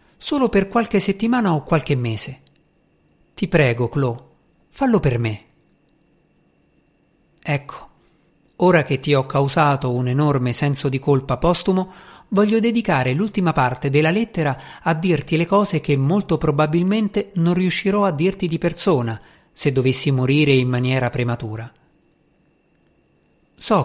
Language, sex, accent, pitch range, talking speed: Italian, male, native, 135-175 Hz, 130 wpm